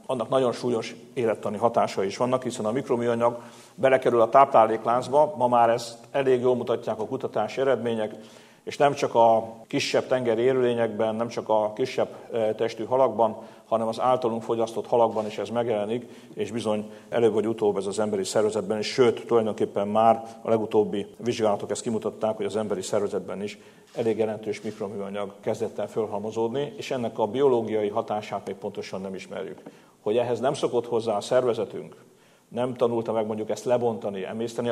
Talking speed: 160 wpm